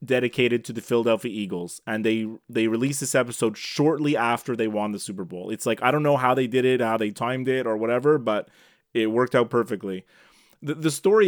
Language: English